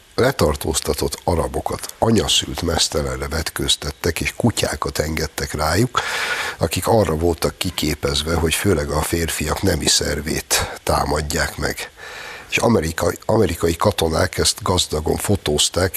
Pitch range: 85-110 Hz